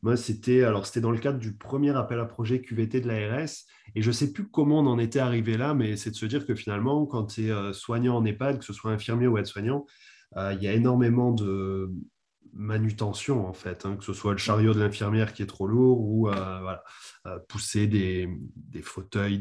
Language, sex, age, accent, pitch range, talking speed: French, male, 20-39, French, 105-135 Hz, 230 wpm